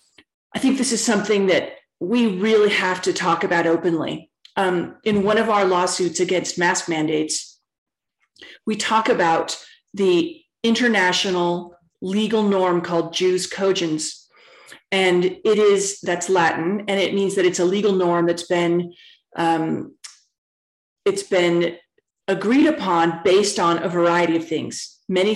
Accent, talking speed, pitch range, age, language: American, 140 wpm, 170-200 Hz, 40-59, English